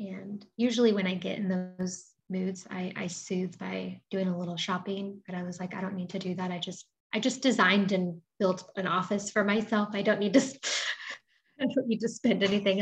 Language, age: English, 20-39